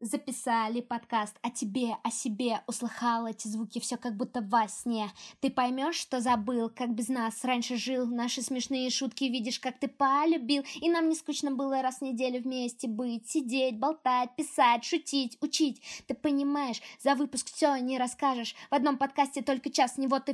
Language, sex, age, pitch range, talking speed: Russian, female, 20-39, 240-290 Hz, 175 wpm